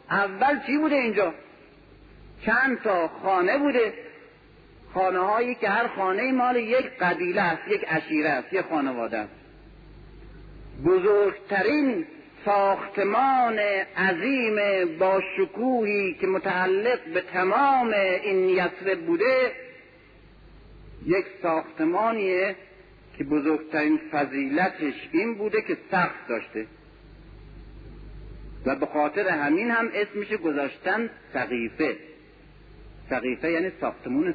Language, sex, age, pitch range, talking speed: Persian, male, 50-69, 180-260 Hz, 90 wpm